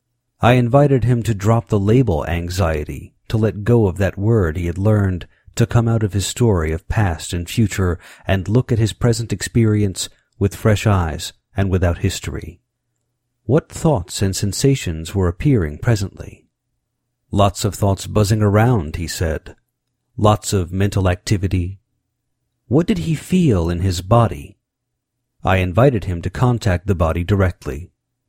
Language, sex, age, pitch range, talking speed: English, male, 50-69, 90-120 Hz, 155 wpm